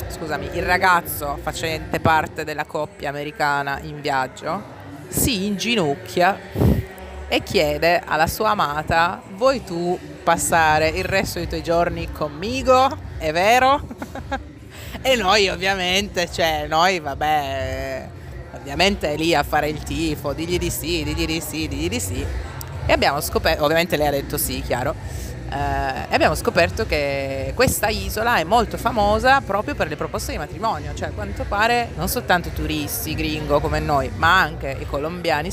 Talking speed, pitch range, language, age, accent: 150 wpm, 145-195 Hz, Italian, 30-49, native